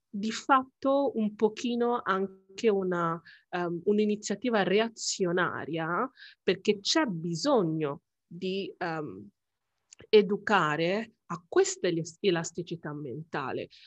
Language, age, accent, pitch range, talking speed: Italian, 30-49, native, 165-195 Hz, 80 wpm